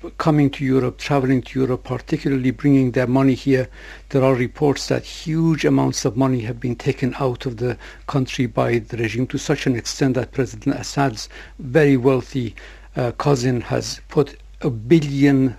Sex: male